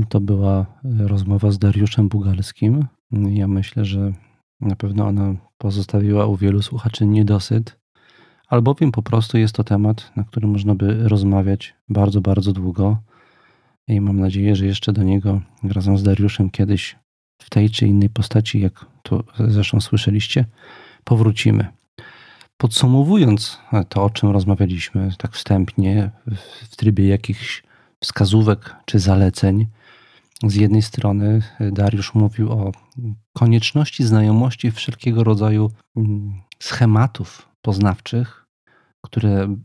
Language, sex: Polish, male